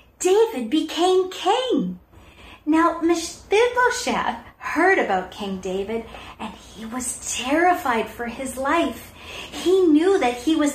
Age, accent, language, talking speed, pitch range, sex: 50-69, American, English, 115 wpm, 230-325 Hz, female